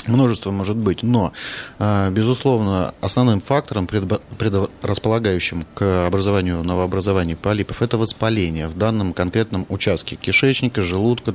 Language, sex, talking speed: Russian, male, 105 wpm